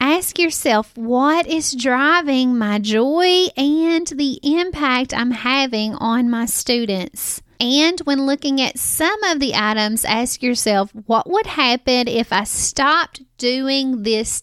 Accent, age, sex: American, 30-49, female